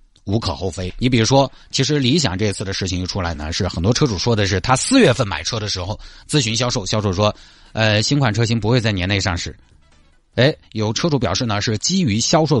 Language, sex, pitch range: Chinese, male, 95-135 Hz